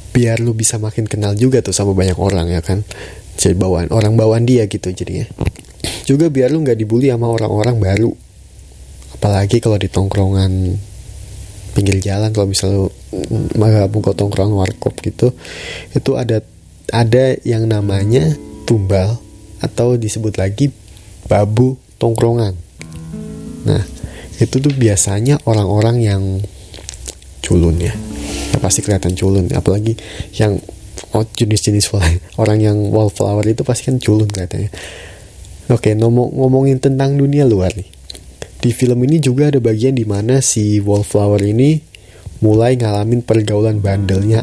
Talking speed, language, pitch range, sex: 130 wpm, Indonesian, 95-115 Hz, male